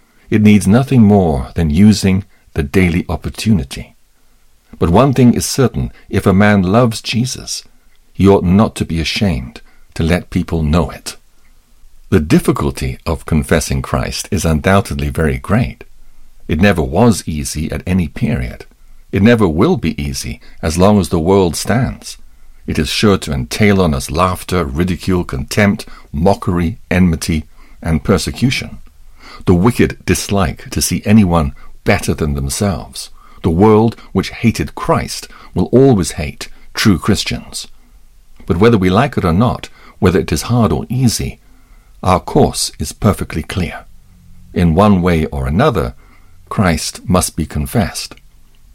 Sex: male